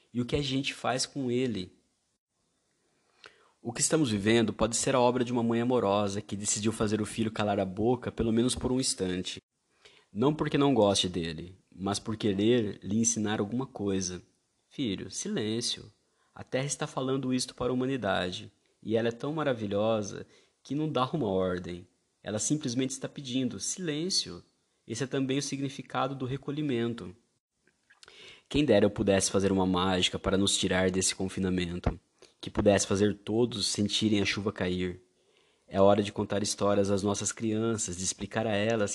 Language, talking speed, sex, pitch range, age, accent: Portuguese, 170 wpm, male, 100-125 Hz, 20-39, Brazilian